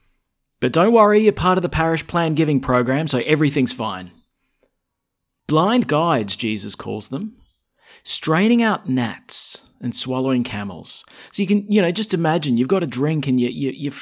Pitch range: 105-140 Hz